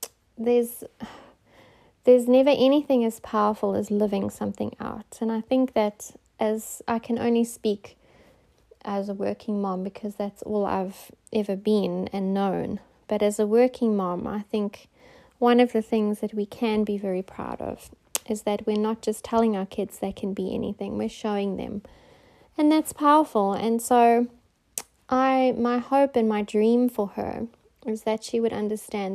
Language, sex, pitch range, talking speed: English, female, 205-240 Hz, 170 wpm